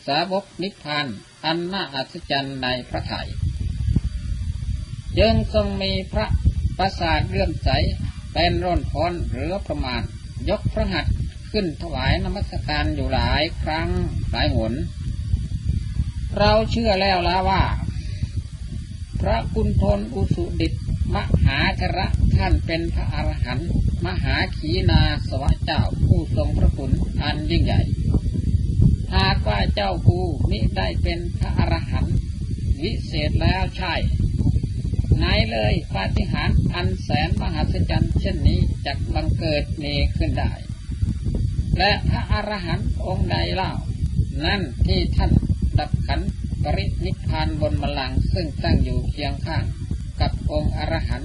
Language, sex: Thai, male